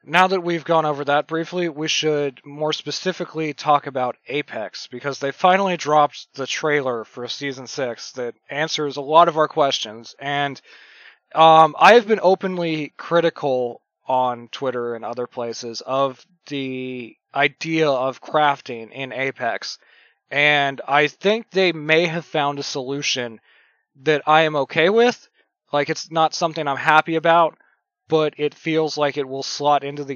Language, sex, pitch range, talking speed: English, male, 130-160 Hz, 155 wpm